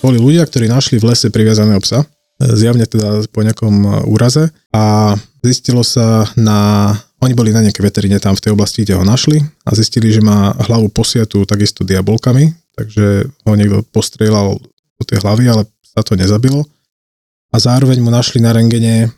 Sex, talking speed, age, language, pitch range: male, 170 wpm, 20-39, Slovak, 105-125 Hz